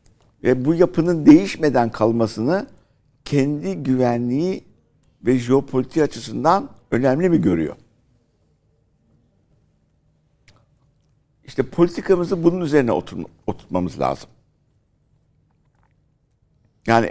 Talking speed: 75 wpm